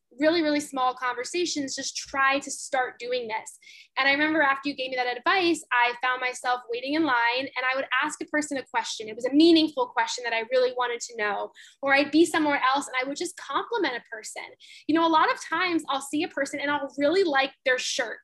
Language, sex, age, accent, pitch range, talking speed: English, female, 10-29, American, 250-320 Hz, 235 wpm